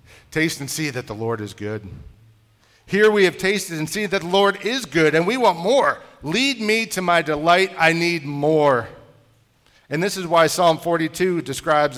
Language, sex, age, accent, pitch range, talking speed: English, male, 40-59, American, 115-155 Hz, 190 wpm